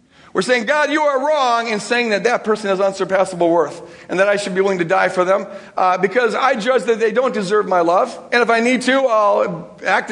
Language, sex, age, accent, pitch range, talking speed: English, male, 50-69, American, 195-245 Hz, 245 wpm